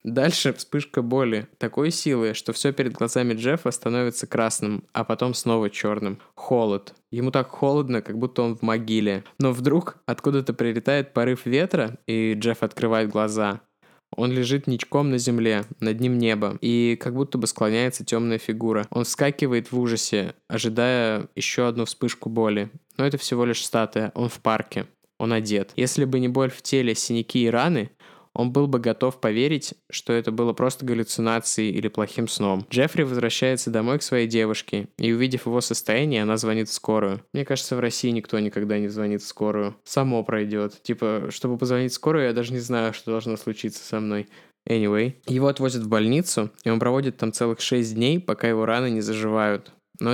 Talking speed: 180 wpm